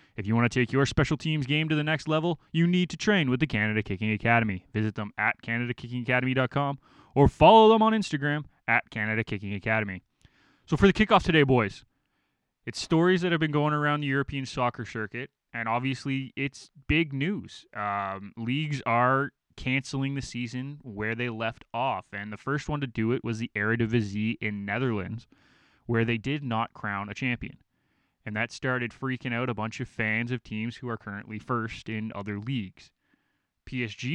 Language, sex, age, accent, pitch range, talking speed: English, male, 20-39, American, 110-140 Hz, 185 wpm